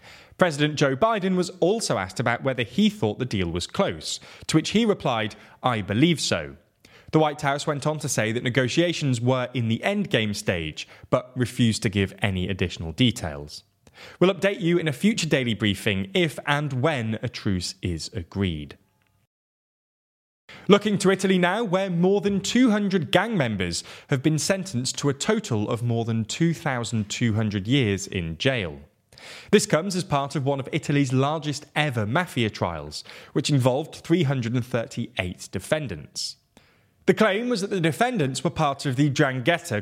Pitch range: 110-170 Hz